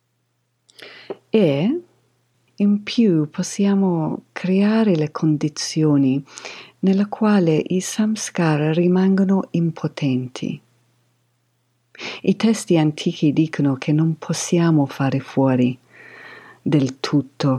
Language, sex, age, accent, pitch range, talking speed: Italian, female, 50-69, native, 130-180 Hz, 80 wpm